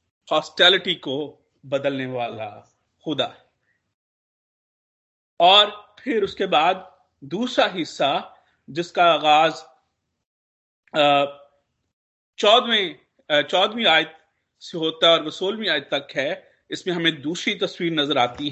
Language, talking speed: Hindi, 90 wpm